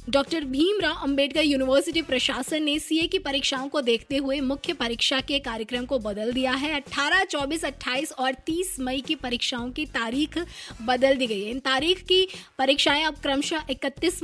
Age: 20-39